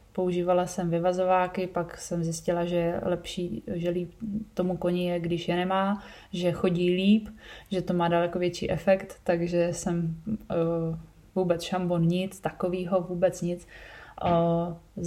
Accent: native